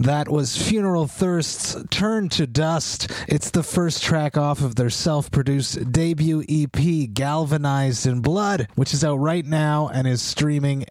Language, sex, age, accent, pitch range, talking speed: English, male, 30-49, American, 130-165 Hz, 155 wpm